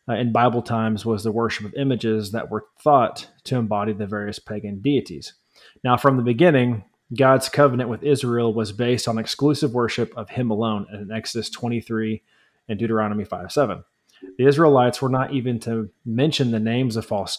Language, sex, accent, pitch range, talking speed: English, male, American, 105-125 Hz, 175 wpm